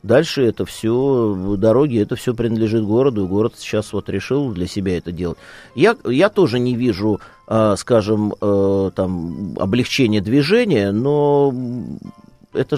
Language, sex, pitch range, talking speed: Russian, male, 100-135 Hz, 130 wpm